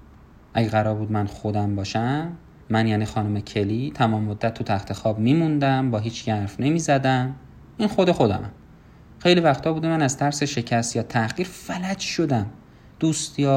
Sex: male